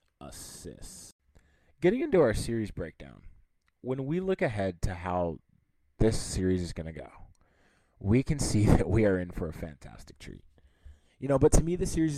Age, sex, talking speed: 20-39, male, 175 wpm